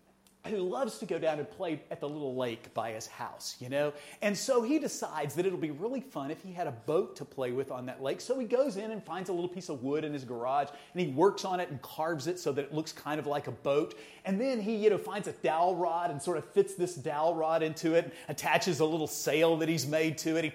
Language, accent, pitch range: English, American, 145-195 Hz